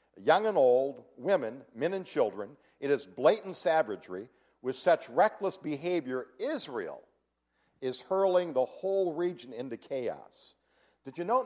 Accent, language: American, English